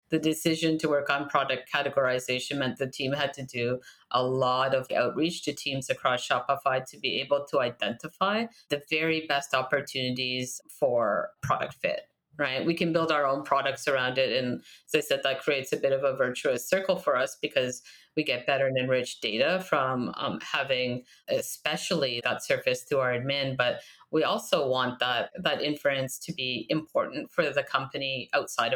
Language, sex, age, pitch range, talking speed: English, female, 30-49, 130-165 Hz, 180 wpm